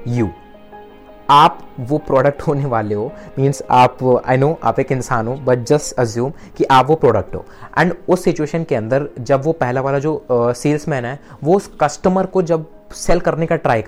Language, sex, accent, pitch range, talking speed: Hindi, male, native, 125-155 Hz, 185 wpm